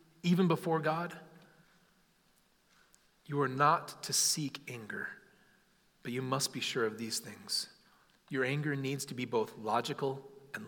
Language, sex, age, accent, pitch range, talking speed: English, male, 30-49, American, 135-185 Hz, 140 wpm